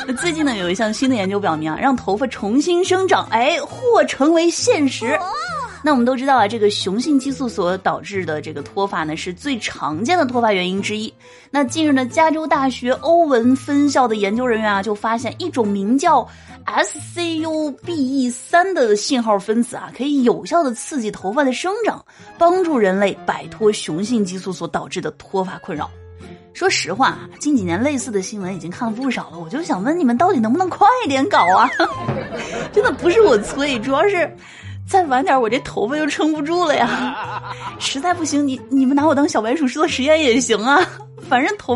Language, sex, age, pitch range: Chinese, female, 20-39, 210-310 Hz